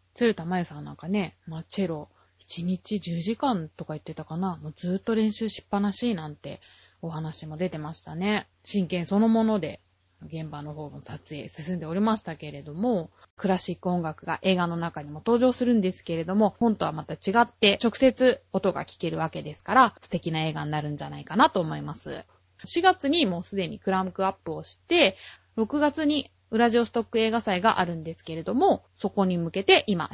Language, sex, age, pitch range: Japanese, female, 20-39, 165-235 Hz